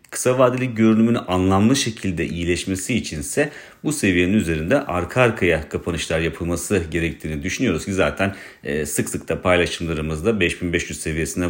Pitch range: 85-105 Hz